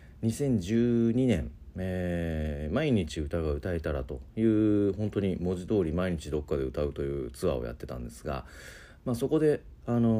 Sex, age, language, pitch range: male, 40-59, Japanese, 75-110 Hz